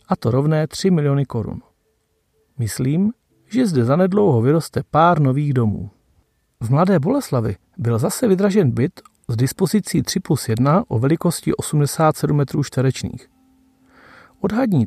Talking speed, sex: 130 wpm, male